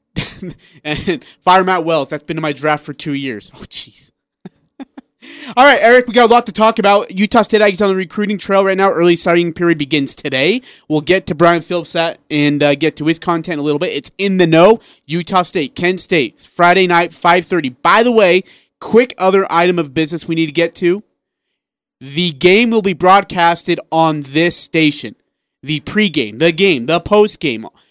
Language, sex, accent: English, male, American